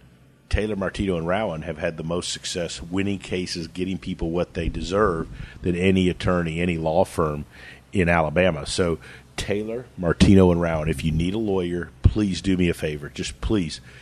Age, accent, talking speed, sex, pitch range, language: 40-59, American, 175 wpm, male, 80-95 Hz, English